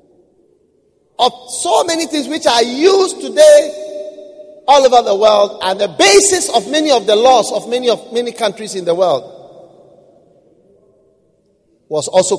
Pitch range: 210-350 Hz